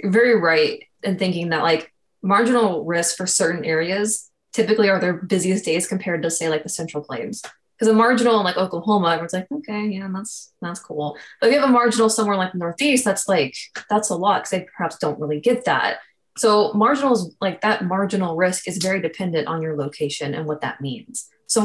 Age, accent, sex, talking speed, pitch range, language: 20-39, American, female, 210 wpm, 170-220 Hz, English